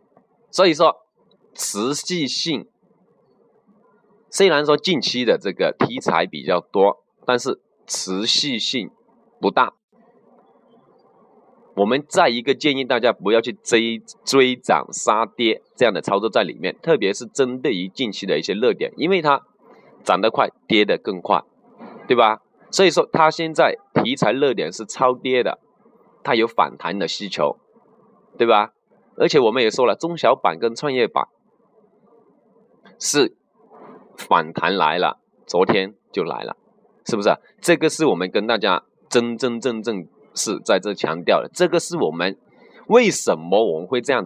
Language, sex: Chinese, male